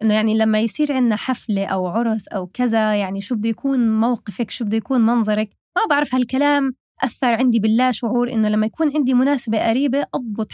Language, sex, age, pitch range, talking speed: Arabic, female, 20-39, 215-270 Hz, 190 wpm